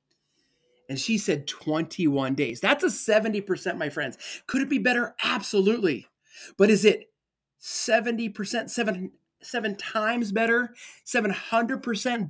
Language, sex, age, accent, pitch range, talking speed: English, male, 30-49, American, 155-230 Hz, 115 wpm